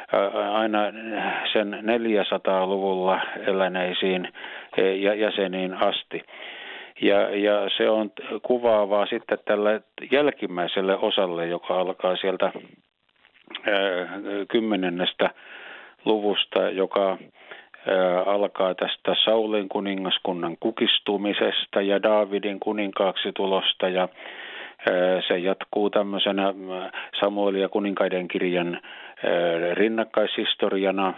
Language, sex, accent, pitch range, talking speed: Finnish, male, native, 95-105 Hz, 80 wpm